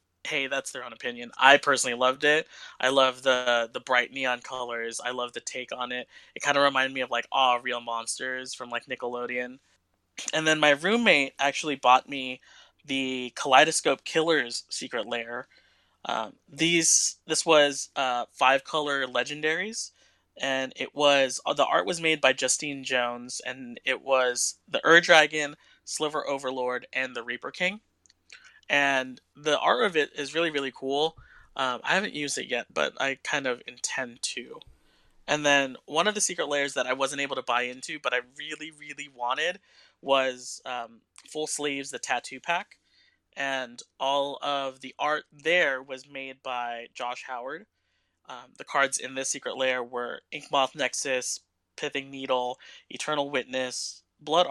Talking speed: 165 wpm